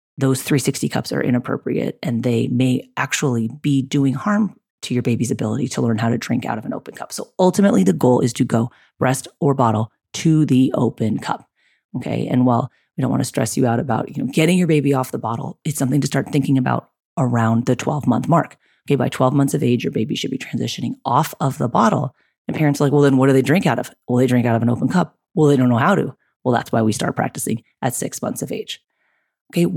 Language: English